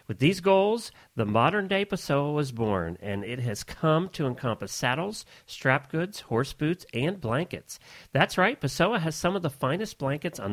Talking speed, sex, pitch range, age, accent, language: 175 wpm, male, 120-170 Hz, 40-59, American, English